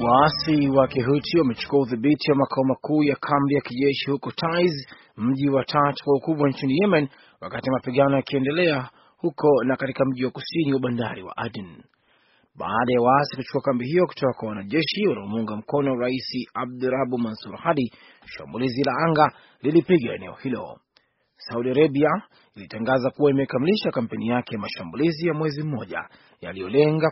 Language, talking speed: Swahili, 150 wpm